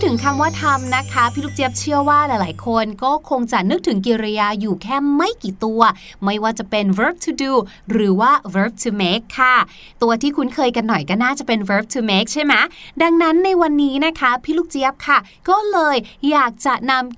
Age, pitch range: 20-39, 220-315 Hz